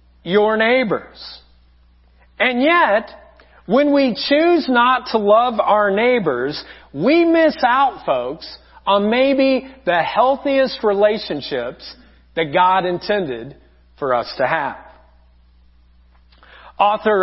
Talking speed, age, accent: 100 wpm, 40-59, American